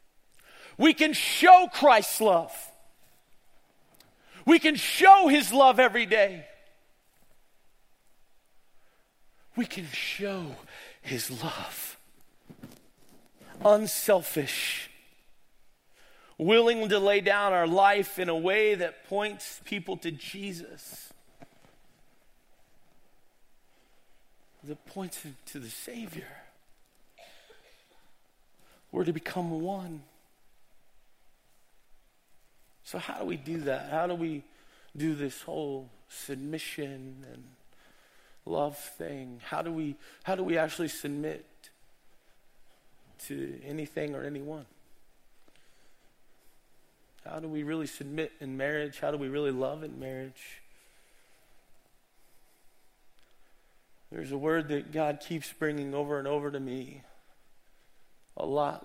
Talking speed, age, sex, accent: 100 wpm, 40-59, male, American